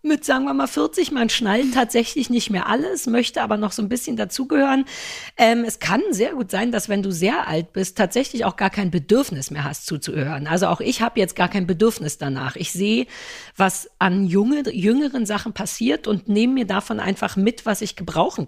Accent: German